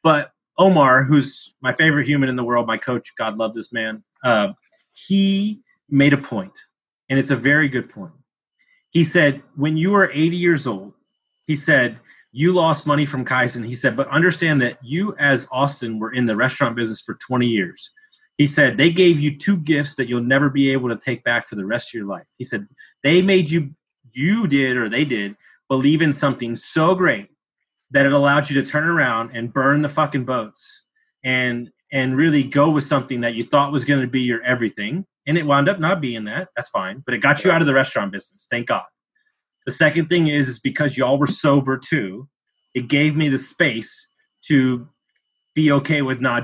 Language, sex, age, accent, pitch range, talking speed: English, male, 30-49, American, 125-160 Hz, 205 wpm